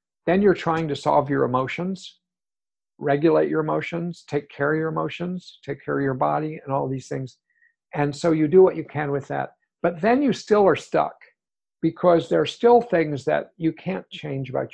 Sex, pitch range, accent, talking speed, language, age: male, 140-170 Hz, American, 200 wpm, English, 50-69